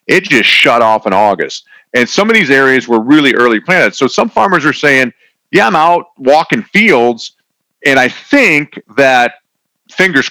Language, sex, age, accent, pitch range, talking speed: English, male, 40-59, American, 100-130 Hz, 175 wpm